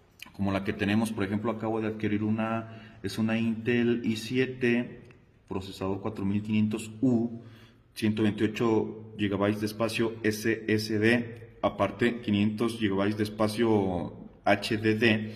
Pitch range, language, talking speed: 105-115 Hz, Spanish, 110 wpm